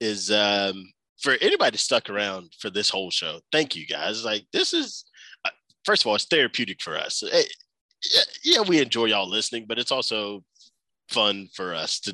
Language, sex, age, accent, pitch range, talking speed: English, male, 20-39, American, 100-135 Hz, 175 wpm